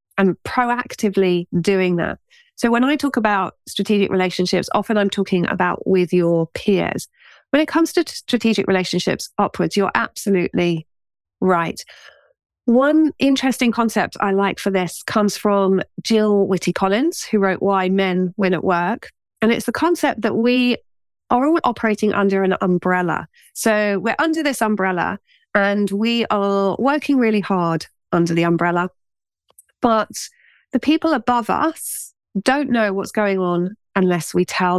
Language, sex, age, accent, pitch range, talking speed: English, female, 30-49, British, 180-230 Hz, 145 wpm